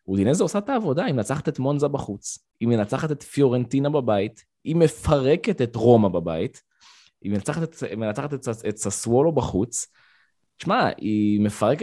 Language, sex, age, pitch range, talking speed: Hebrew, male, 20-39, 105-135 Hz, 135 wpm